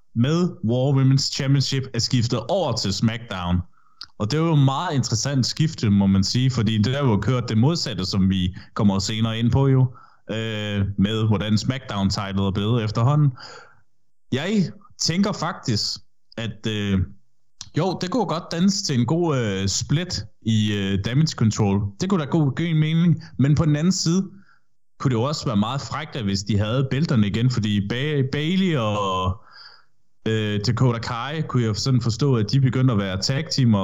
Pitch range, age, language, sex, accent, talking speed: 105-145 Hz, 20-39, Danish, male, native, 175 wpm